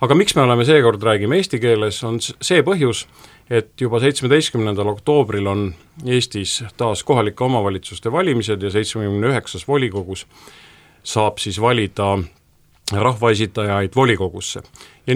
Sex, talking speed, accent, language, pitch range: male, 125 wpm, Finnish, English, 95-120 Hz